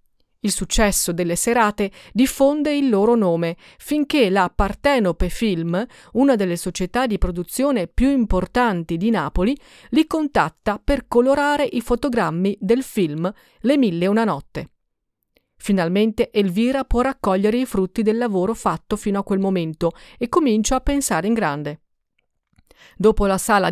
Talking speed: 140 wpm